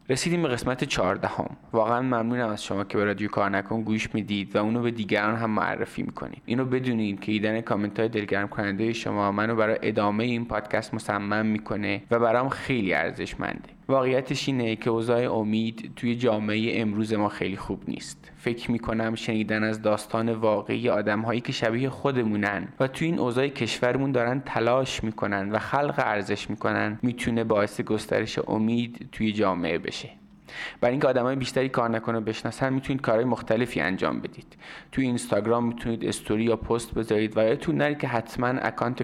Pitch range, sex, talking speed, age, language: 110-125 Hz, male, 165 wpm, 20-39, Persian